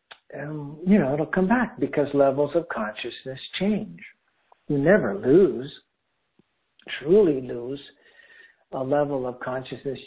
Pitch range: 130-195 Hz